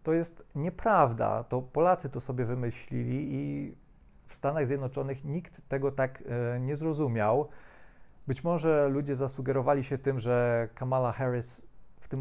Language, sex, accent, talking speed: Polish, male, native, 140 wpm